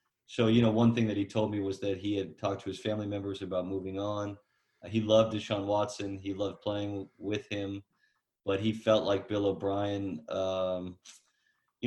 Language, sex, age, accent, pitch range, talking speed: English, male, 30-49, American, 95-105 Hz, 190 wpm